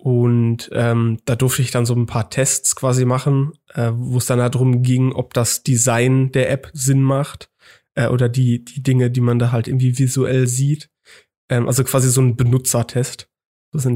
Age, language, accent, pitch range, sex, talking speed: 20-39, German, German, 120-135 Hz, male, 200 wpm